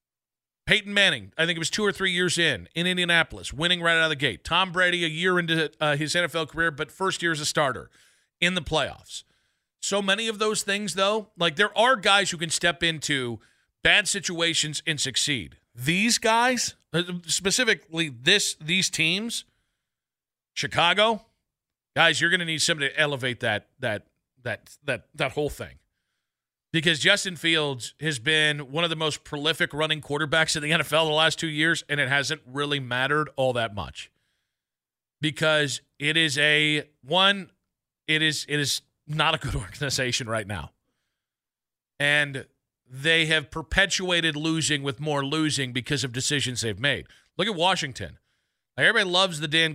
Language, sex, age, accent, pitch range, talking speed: English, male, 40-59, American, 140-175 Hz, 170 wpm